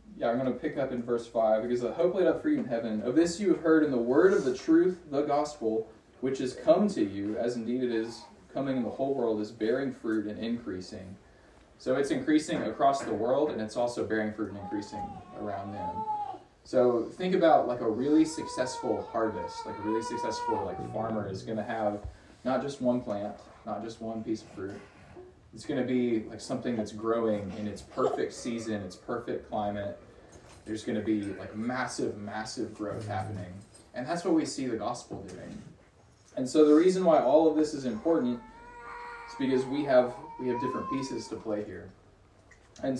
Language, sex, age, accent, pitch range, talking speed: English, male, 20-39, American, 110-160 Hz, 205 wpm